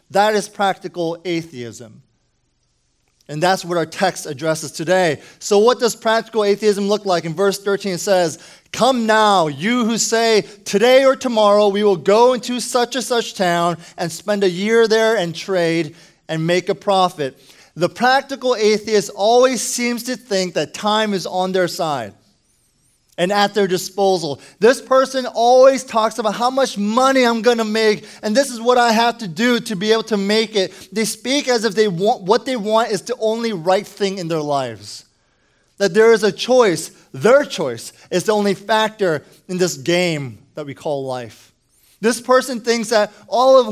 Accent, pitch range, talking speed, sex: American, 180-225 Hz, 185 wpm, male